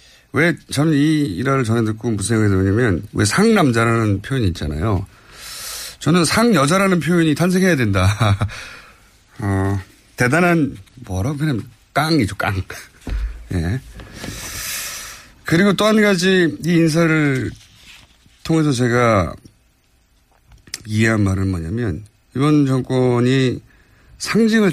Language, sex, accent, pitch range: Korean, male, native, 100-150 Hz